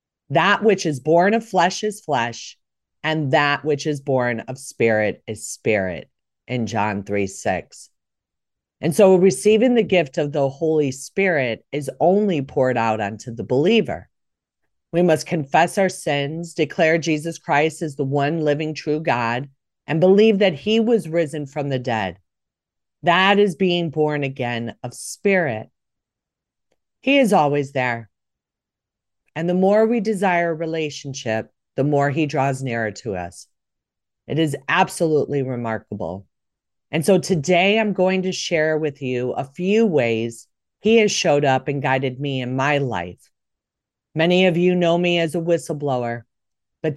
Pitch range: 125-180 Hz